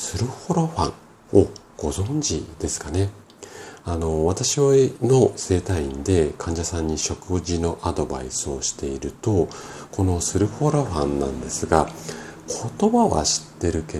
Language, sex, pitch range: Japanese, male, 80-115 Hz